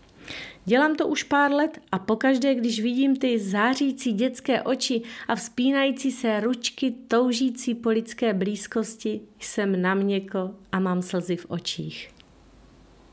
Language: Czech